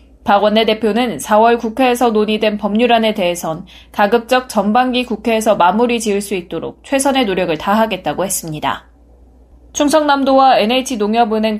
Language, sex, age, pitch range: Korean, female, 20-39, 200-245 Hz